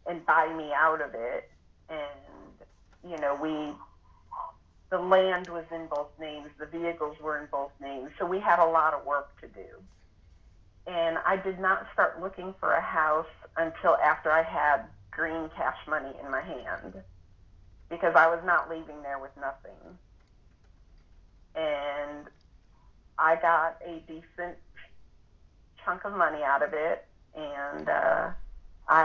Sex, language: female, English